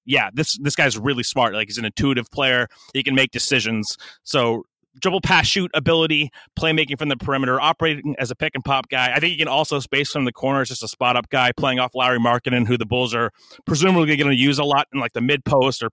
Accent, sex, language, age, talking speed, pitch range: American, male, English, 30-49, 245 wpm, 125-155 Hz